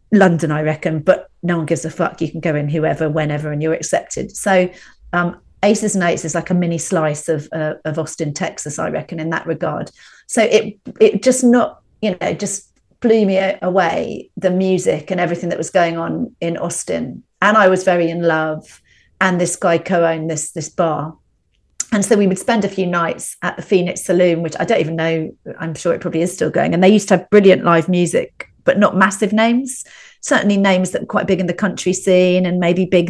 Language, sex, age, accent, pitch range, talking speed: English, female, 40-59, British, 165-200 Hz, 220 wpm